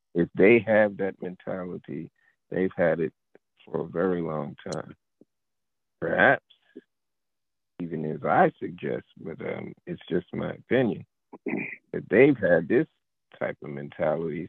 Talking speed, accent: 130 wpm, American